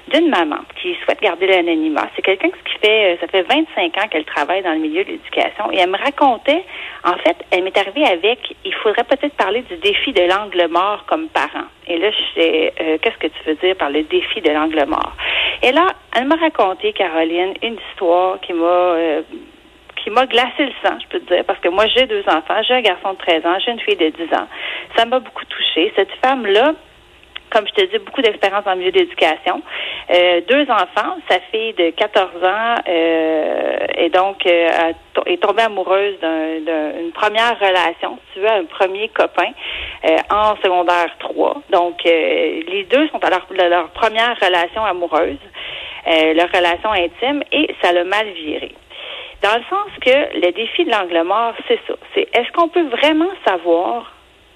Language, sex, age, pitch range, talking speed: French, female, 40-59, 175-280 Hz, 200 wpm